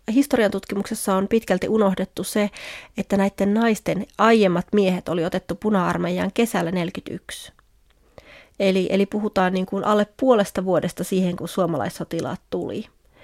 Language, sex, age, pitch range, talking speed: Finnish, female, 30-49, 185-215 Hz, 120 wpm